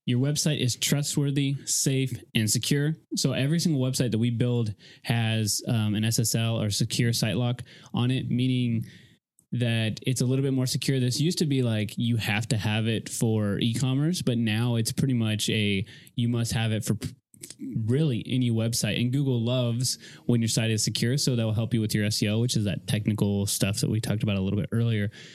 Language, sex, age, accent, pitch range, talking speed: English, male, 20-39, American, 110-130 Hz, 205 wpm